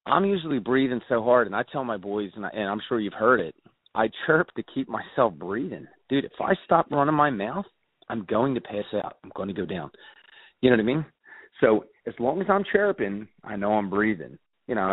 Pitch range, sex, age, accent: 105-140 Hz, male, 30-49, American